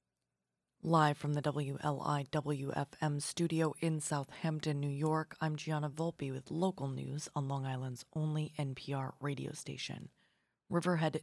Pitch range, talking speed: 145-165 Hz, 125 wpm